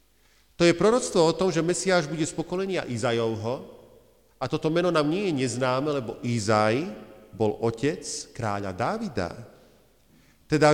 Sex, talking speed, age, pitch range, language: male, 140 wpm, 40-59, 120-165 Hz, Slovak